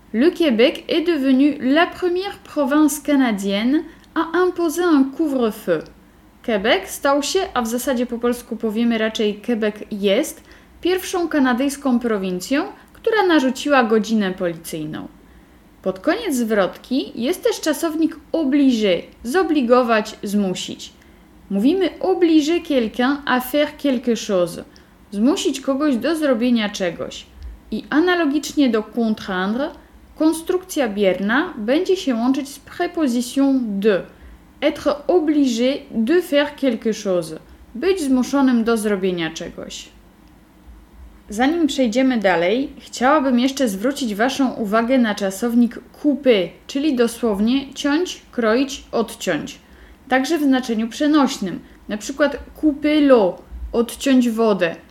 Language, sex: Polish, female